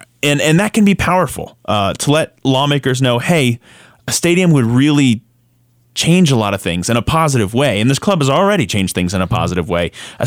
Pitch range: 105-140 Hz